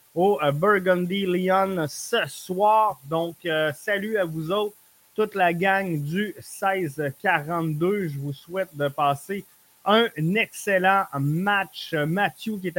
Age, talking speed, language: 30-49, 125 wpm, French